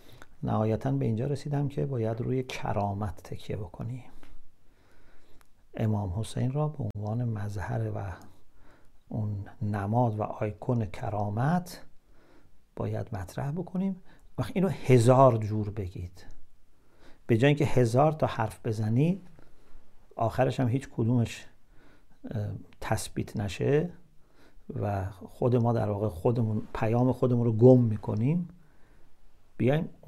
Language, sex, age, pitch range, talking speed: English, male, 50-69, 105-140 Hz, 110 wpm